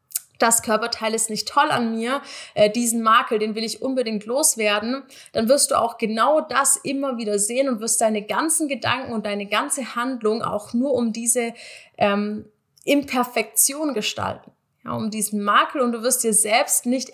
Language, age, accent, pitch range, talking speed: German, 20-39, German, 205-255 Hz, 170 wpm